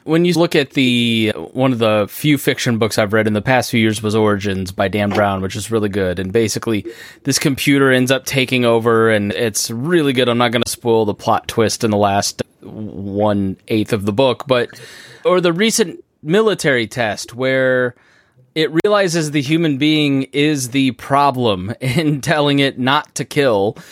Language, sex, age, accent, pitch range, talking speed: English, male, 20-39, American, 110-150 Hz, 190 wpm